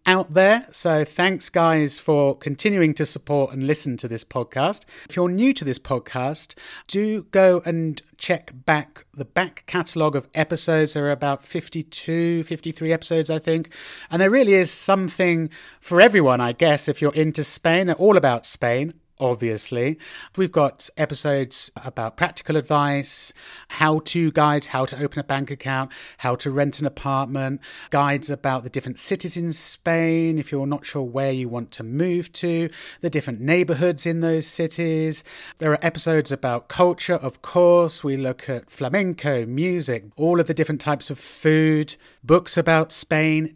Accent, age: British, 30-49